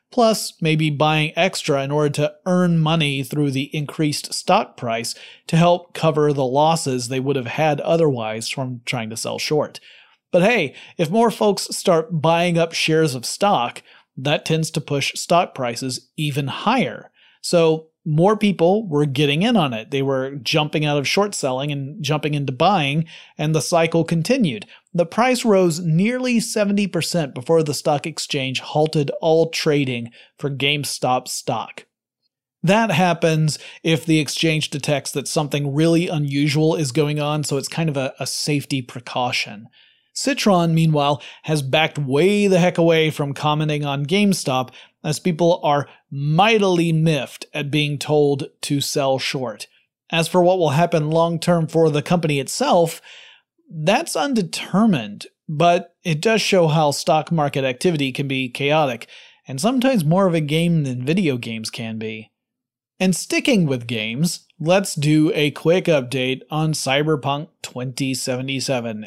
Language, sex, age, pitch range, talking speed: English, male, 30-49, 140-170 Hz, 155 wpm